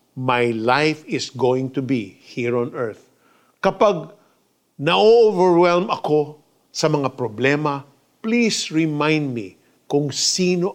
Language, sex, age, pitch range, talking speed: Filipino, male, 50-69, 130-175 Hz, 110 wpm